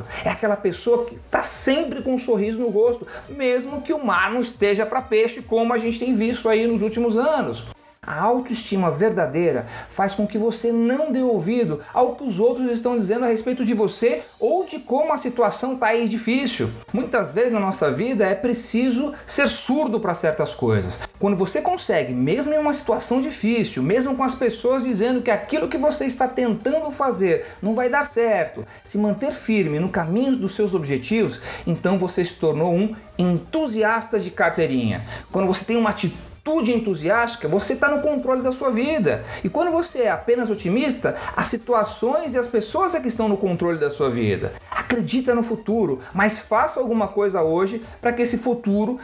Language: Portuguese